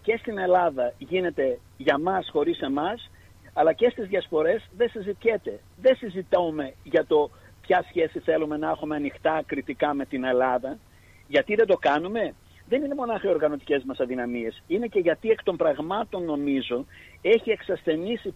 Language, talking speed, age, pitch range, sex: Greek, 155 wpm, 50-69, 145-220 Hz, male